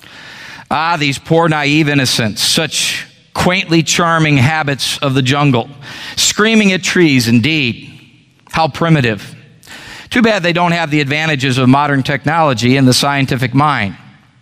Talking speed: 135 wpm